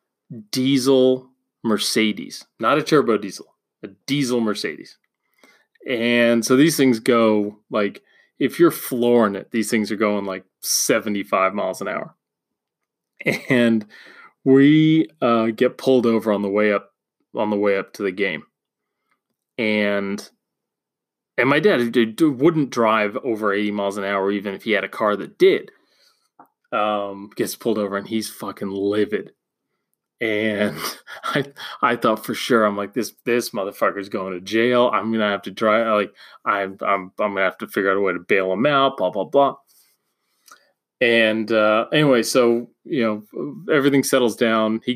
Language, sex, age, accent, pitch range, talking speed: English, male, 20-39, American, 105-125 Hz, 160 wpm